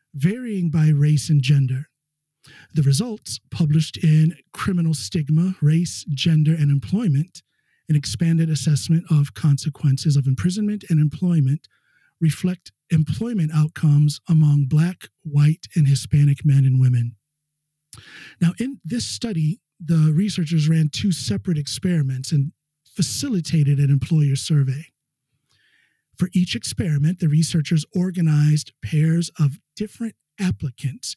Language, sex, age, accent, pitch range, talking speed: English, male, 50-69, American, 140-165 Hz, 115 wpm